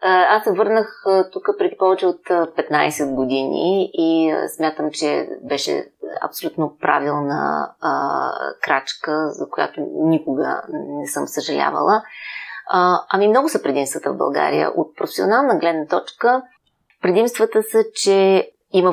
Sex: female